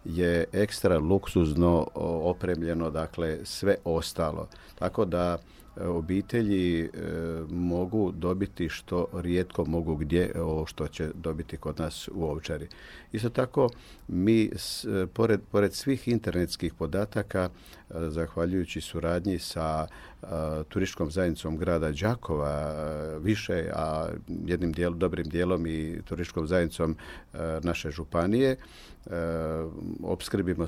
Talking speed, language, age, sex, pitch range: 110 wpm, Croatian, 50-69, male, 80-95 Hz